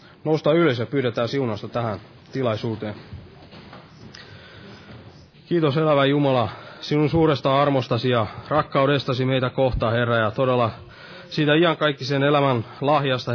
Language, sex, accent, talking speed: Finnish, male, native, 105 wpm